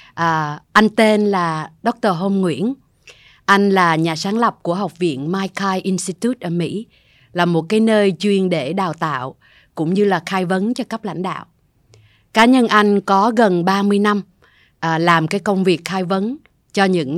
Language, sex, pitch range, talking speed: Vietnamese, female, 160-200 Hz, 180 wpm